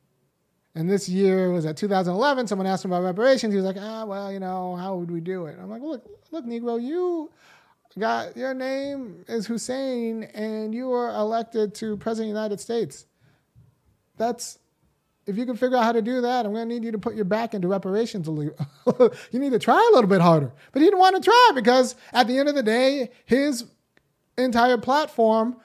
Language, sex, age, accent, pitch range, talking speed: English, male, 30-49, American, 195-240 Hz, 205 wpm